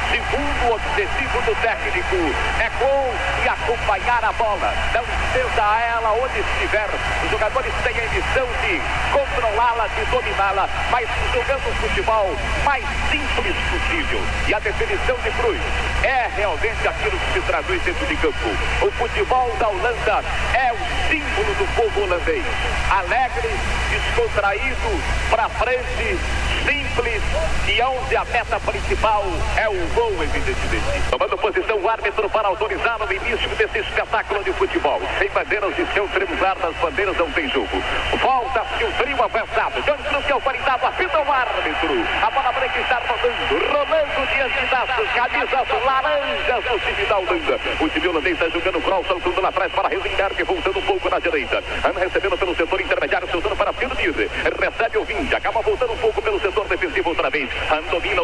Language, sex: English, male